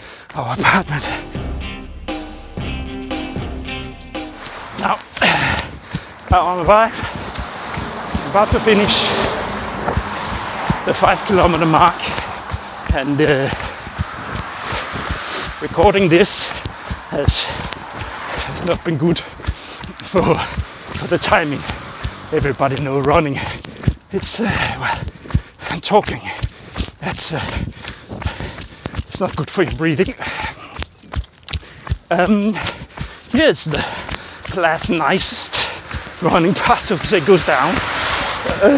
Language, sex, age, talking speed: English, male, 30-49, 80 wpm